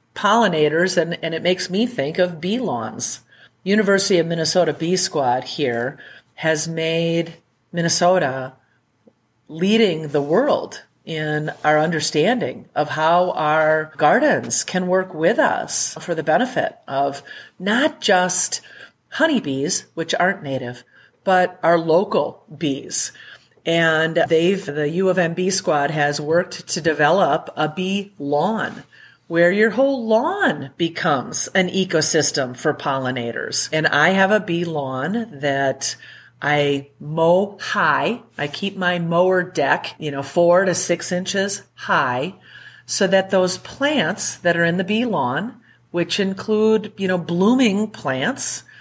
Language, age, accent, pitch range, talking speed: English, 40-59, American, 150-195 Hz, 135 wpm